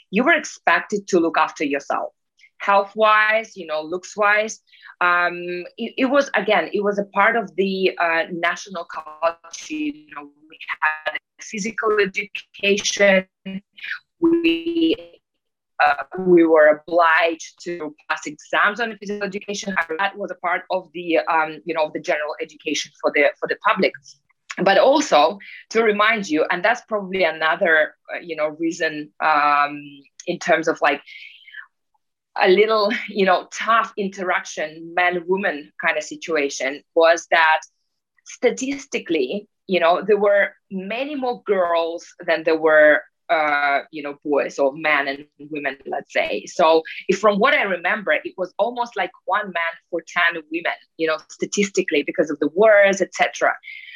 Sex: female